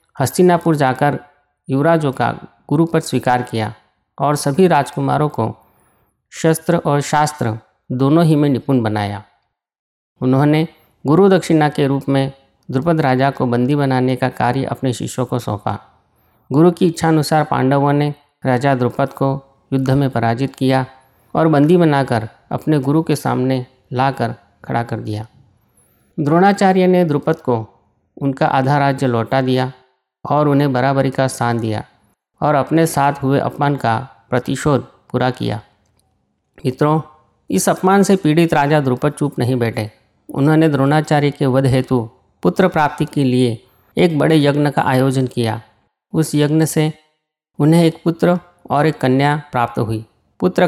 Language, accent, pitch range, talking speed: Hindi, native, 125-155 Hz, 145 wpm